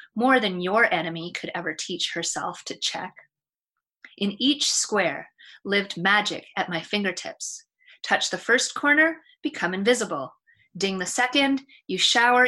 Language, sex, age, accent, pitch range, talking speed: English, female, 30-49, American, 180-245 Hz, 140 wpm